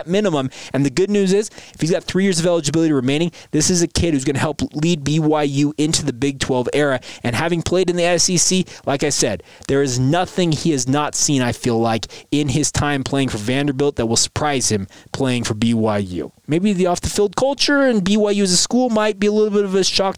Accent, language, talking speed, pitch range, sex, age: American, English, 240 wpm, 130-165 Hz, male, 20-39